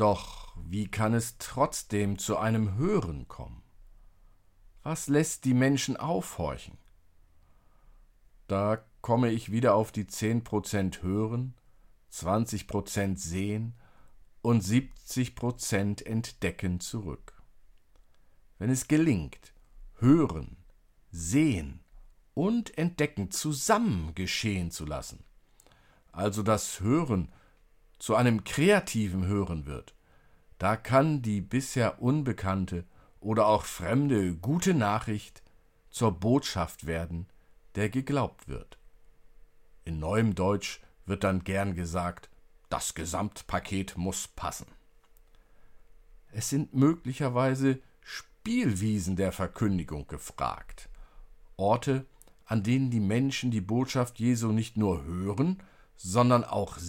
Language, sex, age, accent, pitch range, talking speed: German, male, 50-69, German, 90-125 Hz, 100 wpm